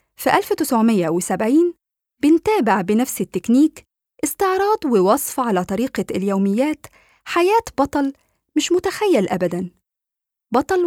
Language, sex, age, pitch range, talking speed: Arabic, female, 20-39, 210-320 Hz, 90 wpm